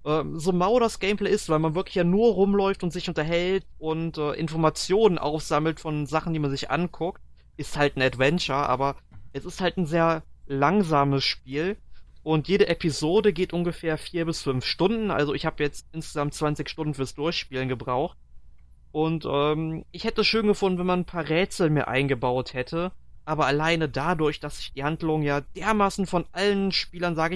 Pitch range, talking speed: 135-170 Hz, 180 wpm